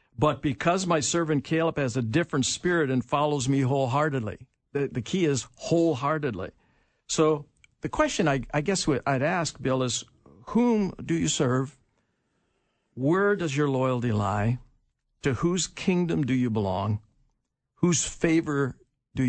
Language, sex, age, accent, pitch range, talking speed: English, male, 60-79, American, 115-145 Hz, 145 wpm